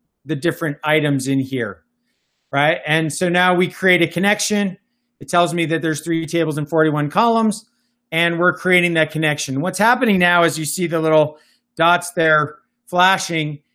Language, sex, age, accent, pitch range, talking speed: English, male, 40-59, American, 155-190 Hz, 170 wpm